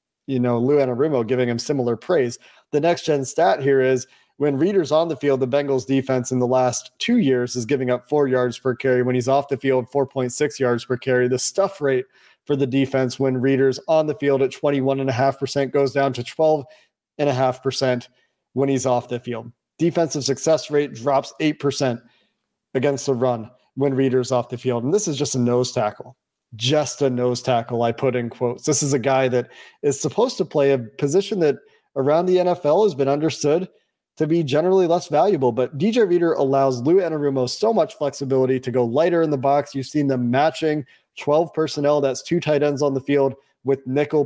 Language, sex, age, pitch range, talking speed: English, male, 40-59, 130-155 Hz, 195 wpm